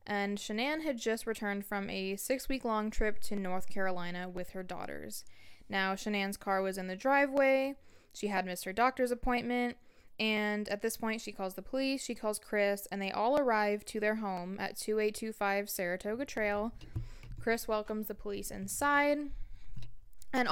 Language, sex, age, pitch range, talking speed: English, female, 10-29, 190-230 Hz, 170 wpm